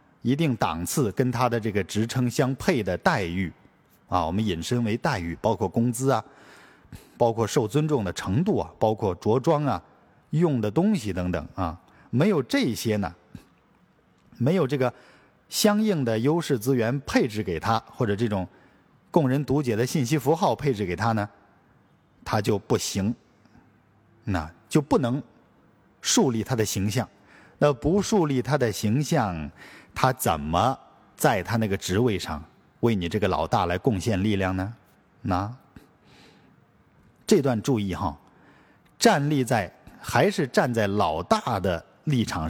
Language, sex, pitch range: Chinese, male, 100-145 Hz